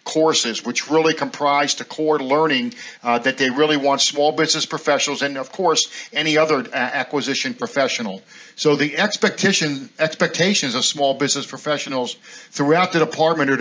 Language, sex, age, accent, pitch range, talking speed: English, male, 50-69, American, 135-160 Hz, 155 wpm